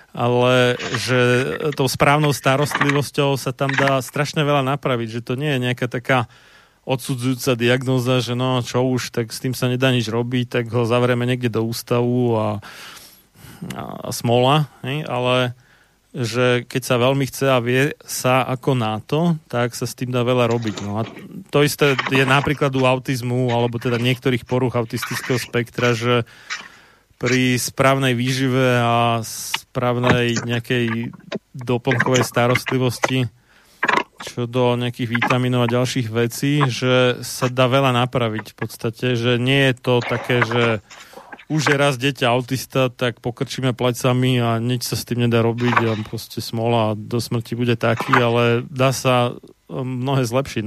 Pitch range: 120-130 Hz